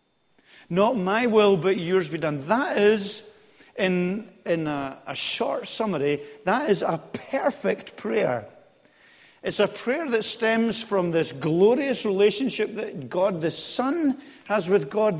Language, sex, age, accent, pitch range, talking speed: English, male, 50-69, British, 150-210 Hz, 140 wpm